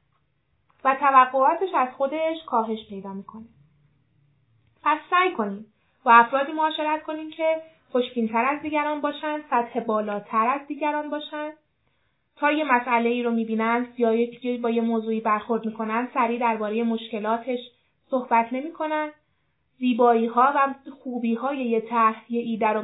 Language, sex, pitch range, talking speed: Persian, female, 225-285 Hz, 140 wpm